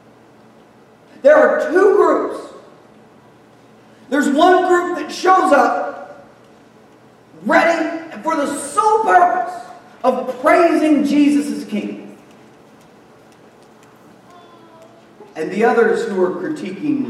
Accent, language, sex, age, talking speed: American, English, male, 40-59, 90 wpm